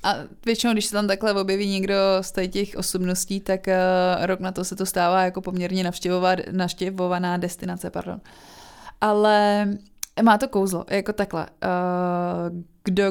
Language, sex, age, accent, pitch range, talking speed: Czech, female, 20-39, native, 180-210 Hz, 145 wpm